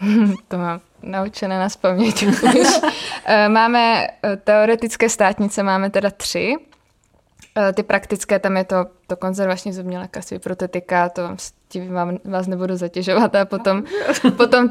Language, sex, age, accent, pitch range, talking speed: Czech, female, 20-39, native, 185-215 Hz, 120 wpm